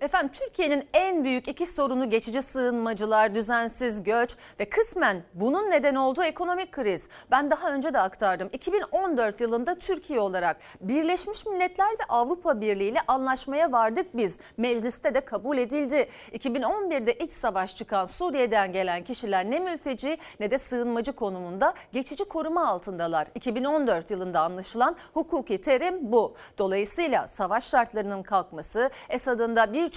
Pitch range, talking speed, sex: 220-315 Hz, 140 wpm, female